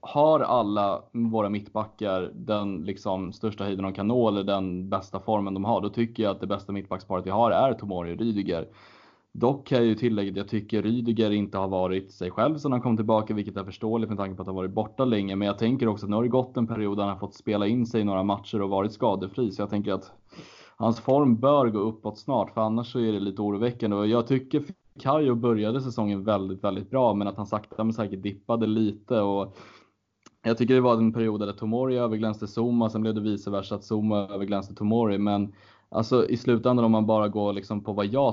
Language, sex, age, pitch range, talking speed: Swedish, male, 20-39, 100-115 Hz, 230 wpm